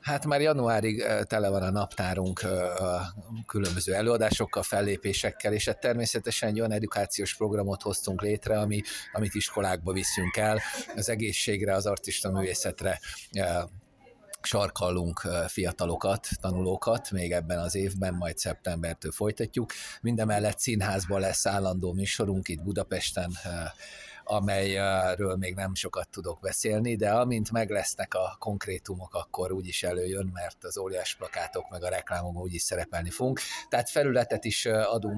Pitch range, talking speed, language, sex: 90-110 Hz, 130 wpm, Hungarian, male